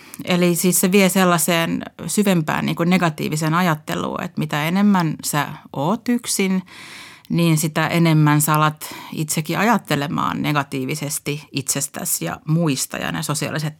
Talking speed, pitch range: 130 wpm, 150-185 Hz